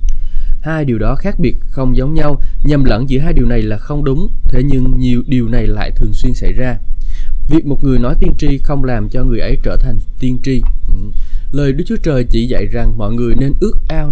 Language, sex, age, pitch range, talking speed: Vietnamese, male, 20-39, 110-140 Hz, 230 wpm